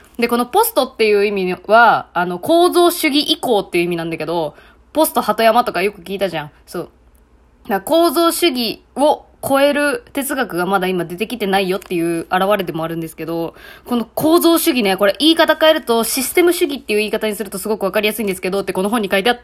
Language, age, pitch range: Japanese, 20-39, 195-300 Hz